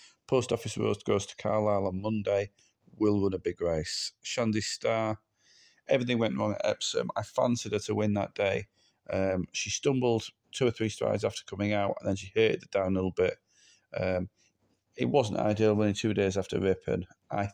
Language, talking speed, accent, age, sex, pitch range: English, 190 wpm, British, 30-49, male, 95-115 Hz